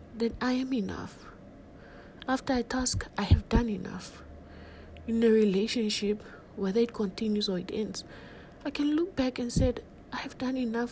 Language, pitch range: English, 190-235 Hz